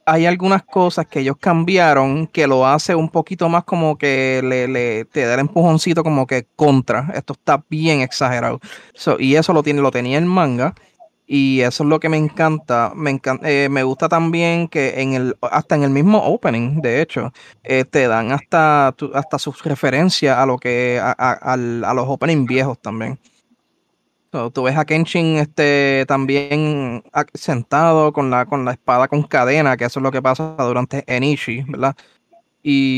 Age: 20-39